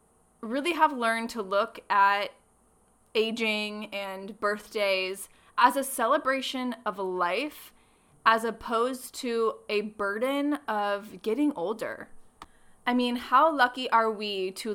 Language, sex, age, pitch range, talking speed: English, female, 20-39, 200-250 Hz, 120 wpm